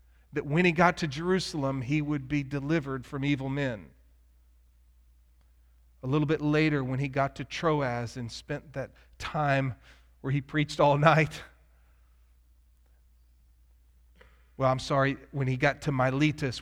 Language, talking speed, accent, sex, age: English, 140 wpm, American, male, 40-59